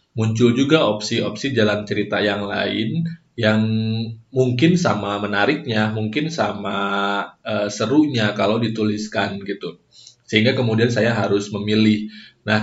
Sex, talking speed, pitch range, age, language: male, 115 wpm, 105-120 Hz, 20-39, Indonesian